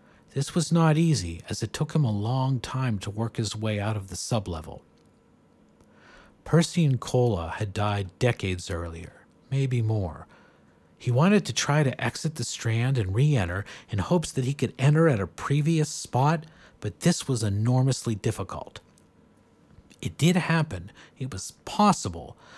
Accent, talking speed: American, 155 wpm